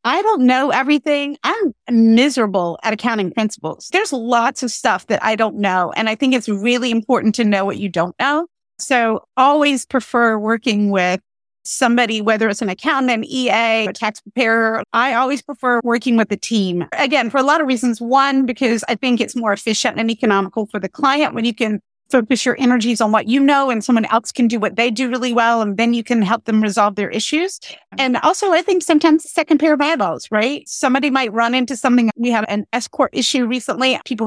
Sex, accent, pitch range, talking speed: female, American, 215-255 Hz, 210 wpm